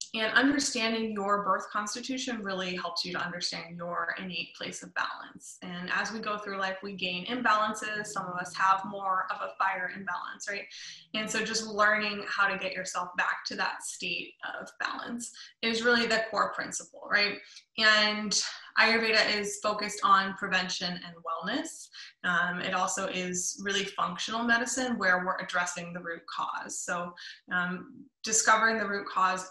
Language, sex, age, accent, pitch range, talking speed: English, female, 20-39, American, 180-220 Hz, 165 wpm